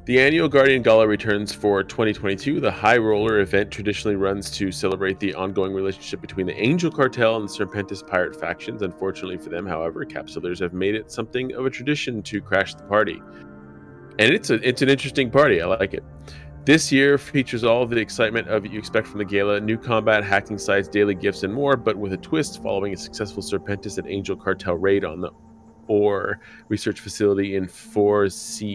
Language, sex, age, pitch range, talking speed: English, male, 30-49, 95-115 Hz, 195 wpm